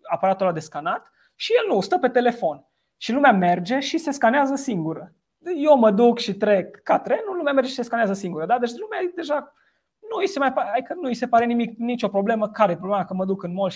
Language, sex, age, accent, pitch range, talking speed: Romanian, male, 20-39, native, 185-230 Hz, 240 wpm